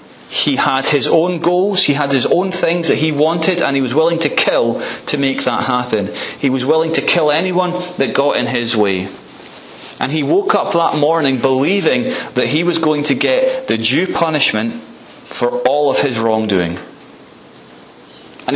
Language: English